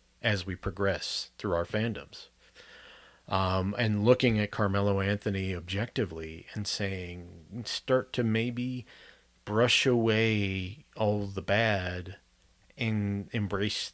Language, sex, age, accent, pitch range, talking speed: English, male, 40-59, American, 95-115 Hz, 110 wpm